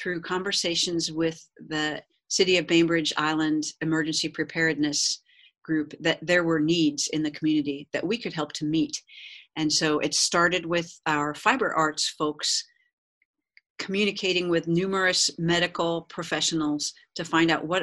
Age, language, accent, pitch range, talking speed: 50-69, English, American, 155-180 Hz, 140 wpm